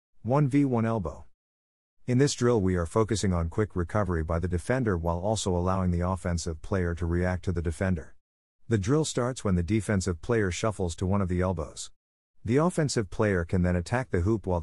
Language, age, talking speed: English, 50-69, 195 wpm